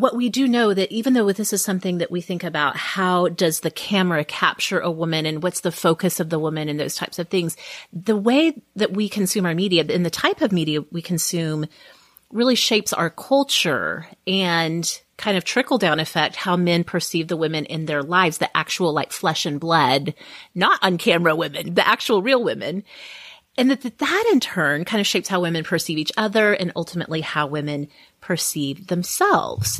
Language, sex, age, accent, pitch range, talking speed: English, female, 30-49, American, 160-200 Hz, 195 wpm